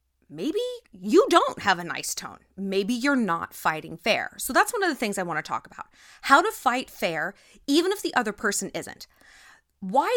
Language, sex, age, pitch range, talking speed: English, female, 20-39, 195-275 Hz, 200 wpm